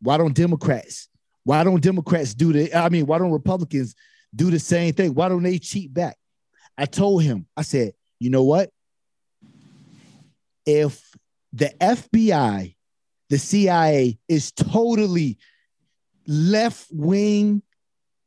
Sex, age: male, 30-49